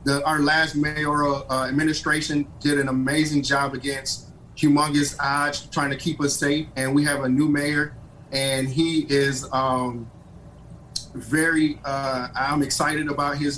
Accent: American